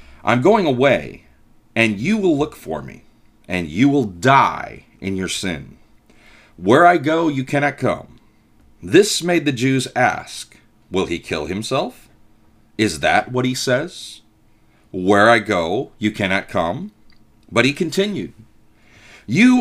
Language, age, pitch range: English, 40-59, 105-145 Hz